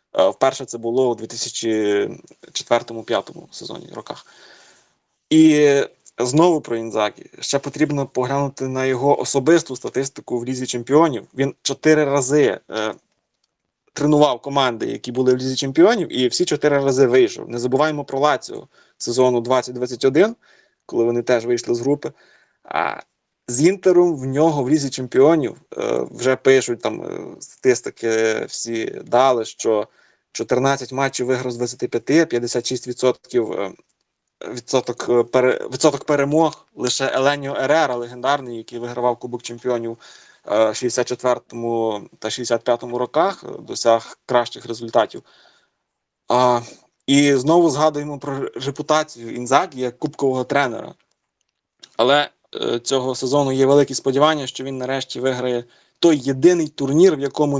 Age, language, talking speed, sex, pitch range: 20-39, Ukrainian, 120 wpm, male, 120-145 Hz